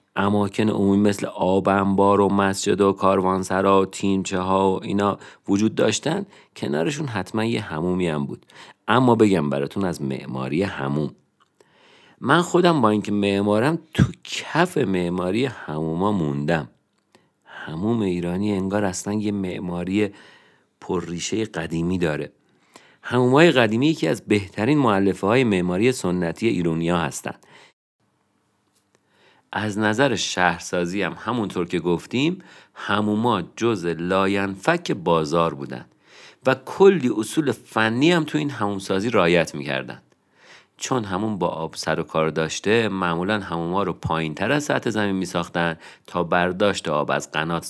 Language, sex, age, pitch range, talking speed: Persian, male, 50-69, 85-105 Hz, 130 wpm